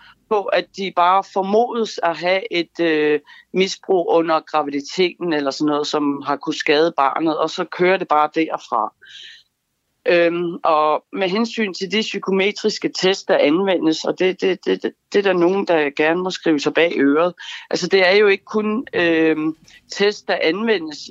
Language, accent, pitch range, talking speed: Danish, native, 160-205 Hz, 175 wpm